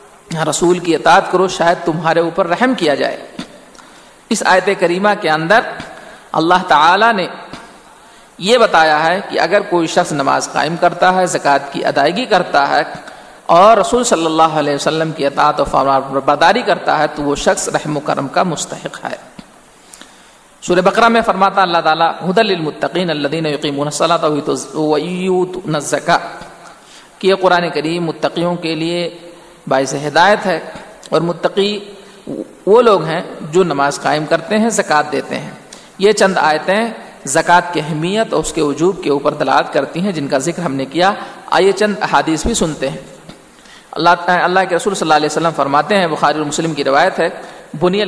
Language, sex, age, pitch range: Urdu, male, 50-69, 155-195 Hz